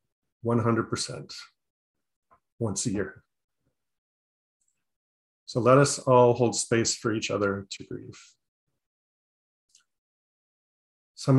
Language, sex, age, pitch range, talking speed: English, male, 30-49, 105-125 Hz, 80 wpm